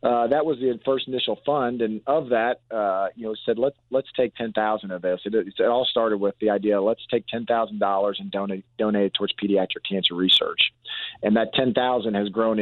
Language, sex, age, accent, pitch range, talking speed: English, male, 40-59, American, 105-120 Hz, 225 wpm